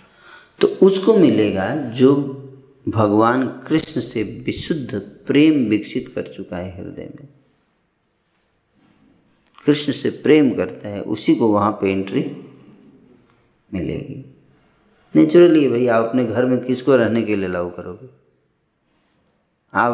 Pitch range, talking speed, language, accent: 100-135 Hz, 115 wpm, Hindi, native